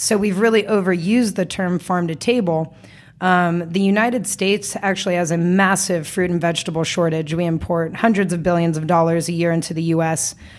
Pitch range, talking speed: 170-200 Hz, 185 wpm